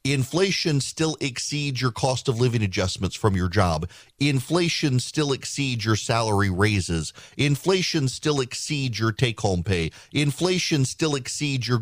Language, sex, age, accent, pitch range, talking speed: English, male, 40-59, American, 125-170 Hz, 135 wpm